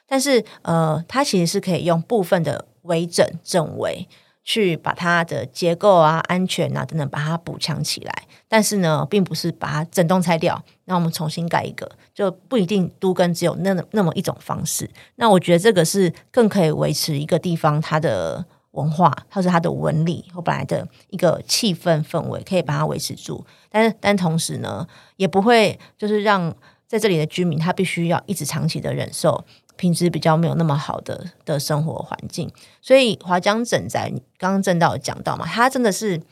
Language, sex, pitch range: Chinese, female, 160-195 Hz